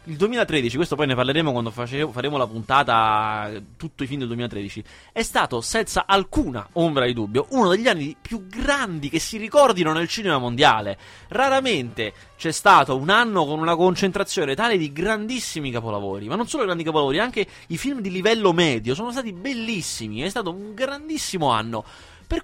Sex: male